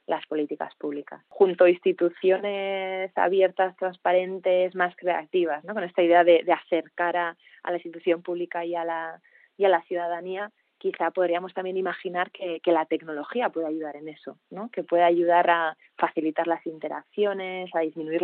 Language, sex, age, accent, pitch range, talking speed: Spanish, female, 20-39, Spanish, 165-185 Hz, 170 wpm